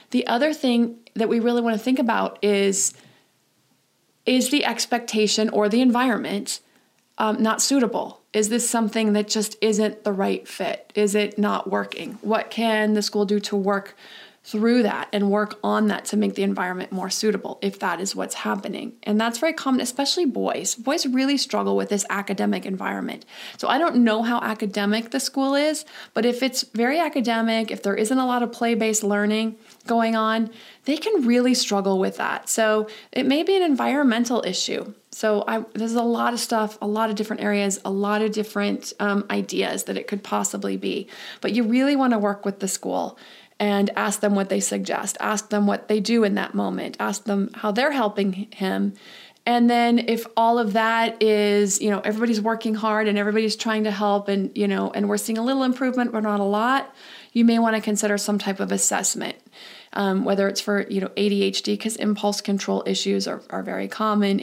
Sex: female